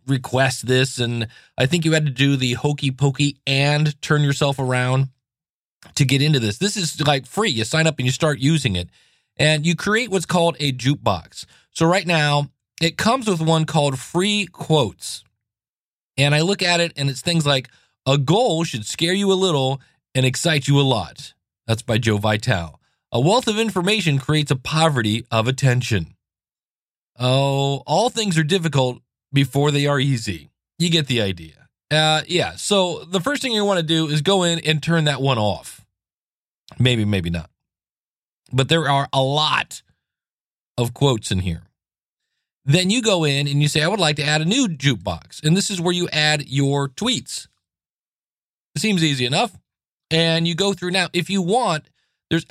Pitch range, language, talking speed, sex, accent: 130-170 Hz, English, 185 wpm, male, American